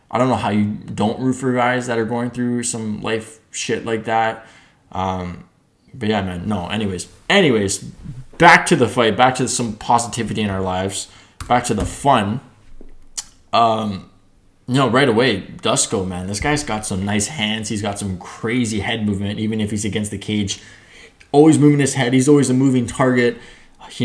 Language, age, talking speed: English, 20-39, 190 wpm